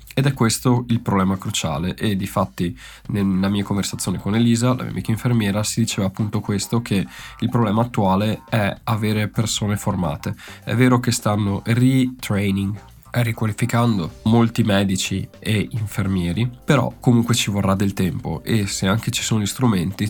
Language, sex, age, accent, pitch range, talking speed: Italian, male, 20-39, native, 100-120 Hz, 160 wpm